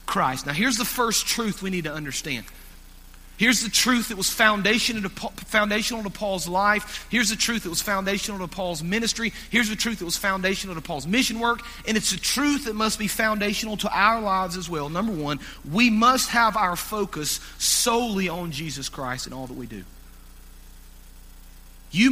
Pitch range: 155-220 Hz